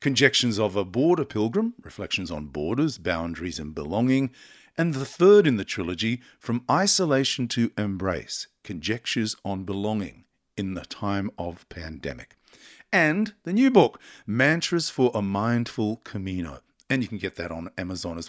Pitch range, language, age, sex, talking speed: 90-125 Hz, English, 50-69, male, 150 wpm